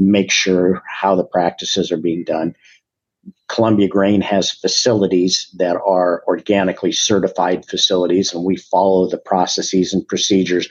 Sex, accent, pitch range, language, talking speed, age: male, American, 90-105 Hz, English, 135 wpm, 50-69